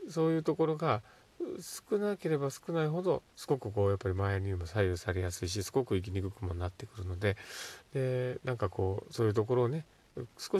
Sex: male